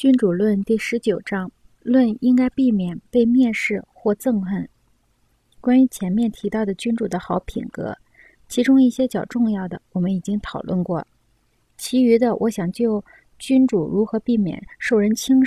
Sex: female